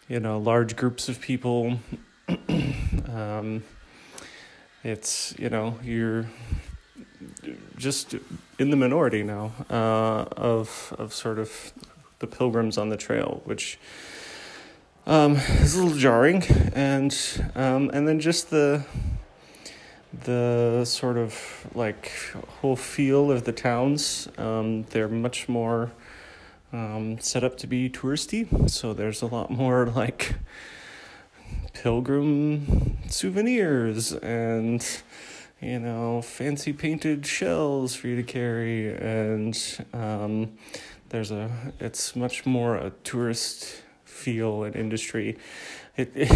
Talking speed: 120 wpm